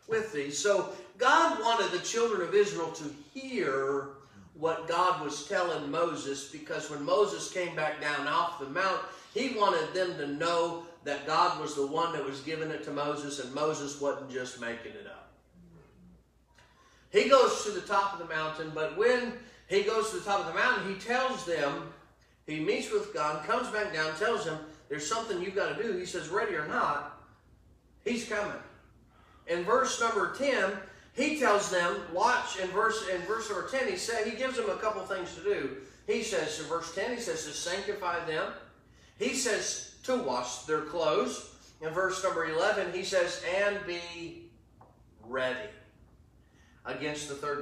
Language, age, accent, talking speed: English, 40-59, American, 180 wpm